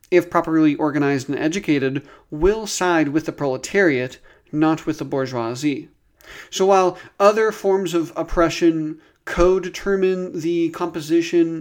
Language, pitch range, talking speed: English, 140-185 Hz, 120 wpm